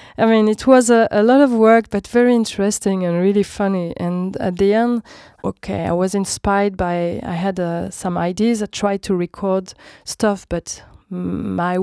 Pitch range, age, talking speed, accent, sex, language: 180-210 Hz, 20-39, 185 wpm, French, female, English